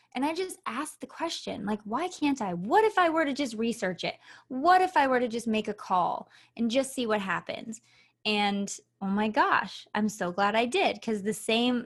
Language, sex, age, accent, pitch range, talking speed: English, female, 20-39, American, 205-265 Hz, 225 wpm